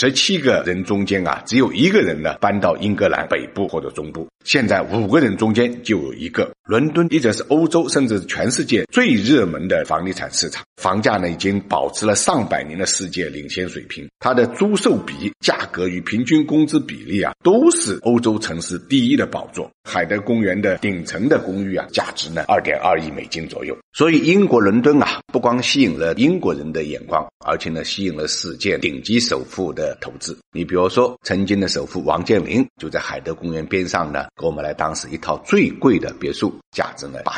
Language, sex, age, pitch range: Chinese, male, 50-69, 90-125 Hz